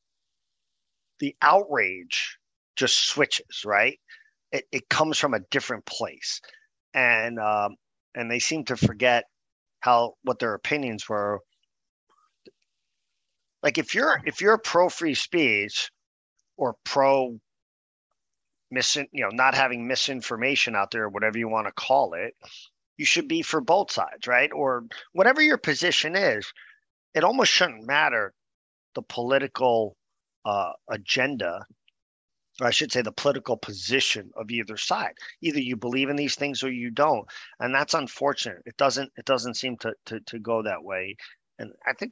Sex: male